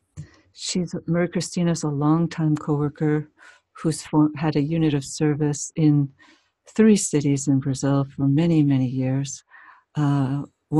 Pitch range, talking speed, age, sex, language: 140-155 Hz, 135 wpm, 60-79, female, English